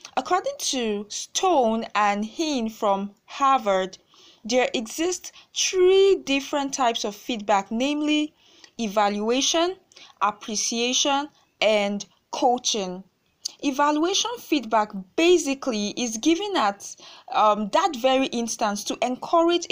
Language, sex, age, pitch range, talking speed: English, female, 20-39, 215-285 Hz, 95 wpm